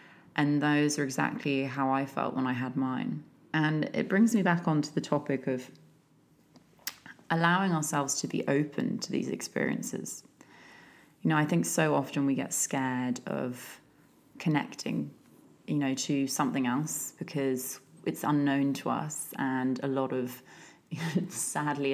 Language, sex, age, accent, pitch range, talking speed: English, female, 20-39, British, 130-150 Hz, 150 wpm